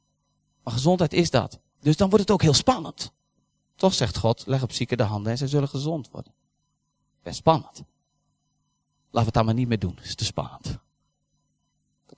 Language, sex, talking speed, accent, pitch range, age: Dutch, male, 205 wpm, Dutch, 115-155 Hz, 40-59